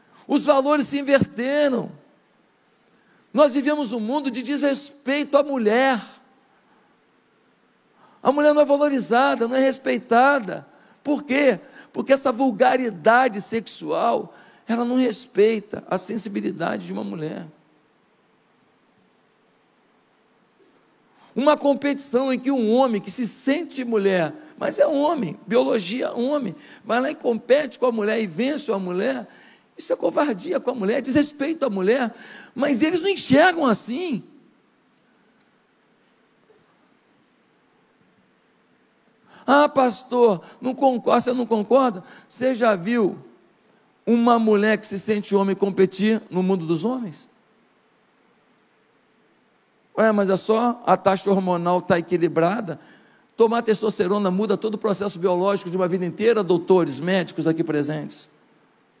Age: 50-69